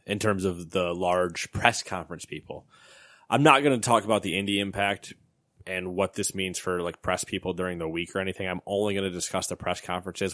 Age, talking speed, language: 20-39, 220 wpm, English